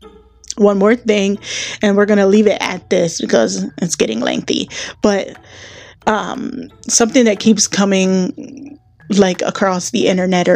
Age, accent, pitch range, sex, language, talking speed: 10-29, American, 185-240 Hz, female, English, 140 wpm